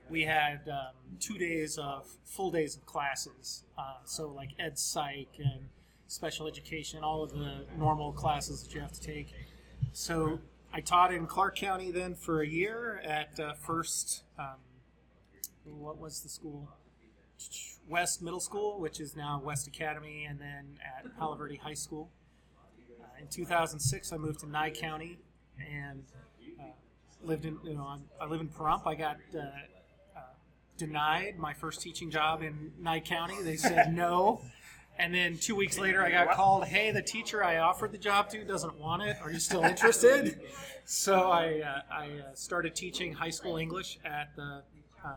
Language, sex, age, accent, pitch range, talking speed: English, male, 30-49, American, 145-170 Hz, 170 wpm